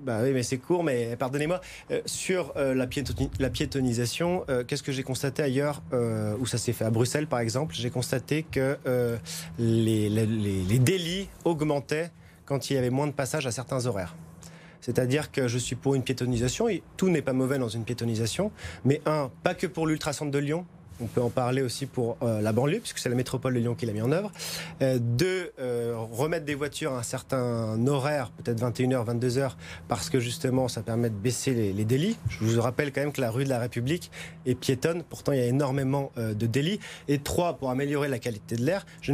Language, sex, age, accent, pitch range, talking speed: French, male, 30-49, French, 120-150 Hz, 220 wpm